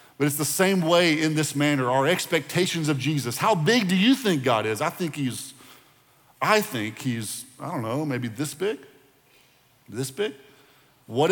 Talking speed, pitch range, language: 180 wpm, 115-145 Hz, English